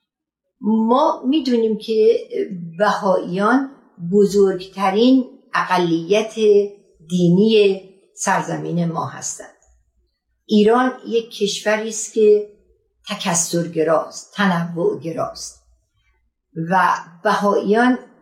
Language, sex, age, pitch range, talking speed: Persian, female, 50-69, 175-225 Hz, 65 wpm